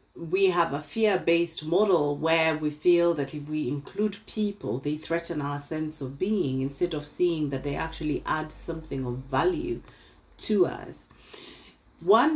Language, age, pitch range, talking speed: English, 40-59, 140-185 Hz, 155 wpm